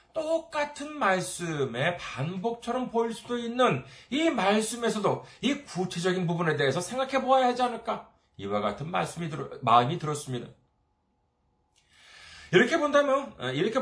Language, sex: Korean, male